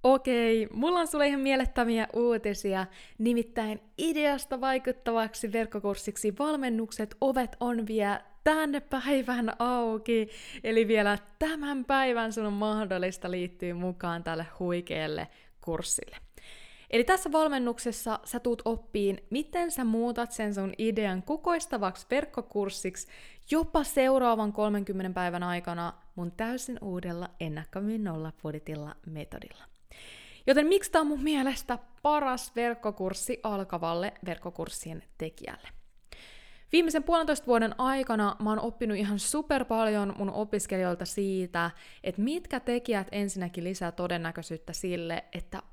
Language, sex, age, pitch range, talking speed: Finnish, female, 20-39, 185-255 Hz, 115 wpm